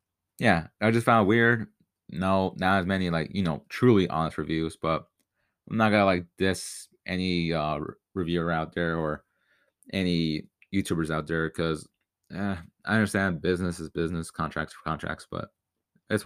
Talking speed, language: 160 wpm, English